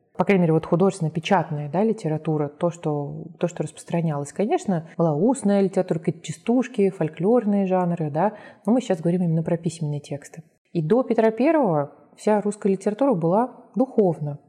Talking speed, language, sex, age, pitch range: 155 wpm, Russian, female, 20-39, 165-210 Hz